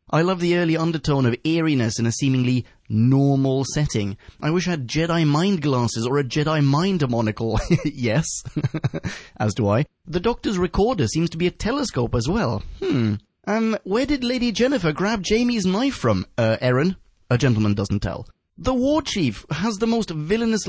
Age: 30-49